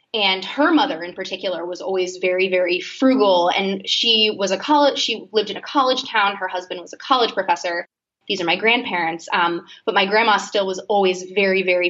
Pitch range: 185-235 Hz